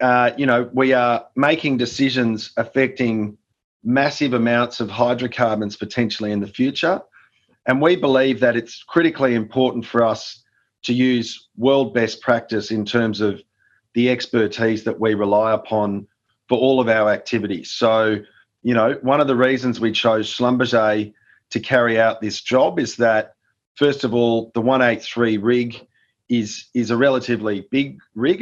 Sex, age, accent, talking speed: male, 40-59, Australian, 155 wpm